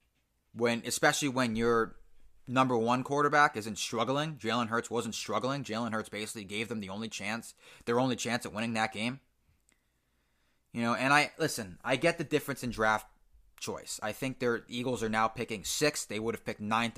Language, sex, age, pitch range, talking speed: English, male, 20-39, 115-170 Hz, 185 wpm